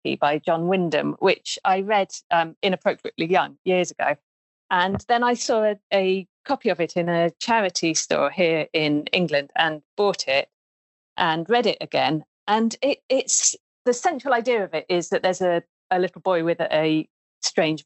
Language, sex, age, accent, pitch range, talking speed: English, female, 40-59, British, 165-220 Hz, 175 wpm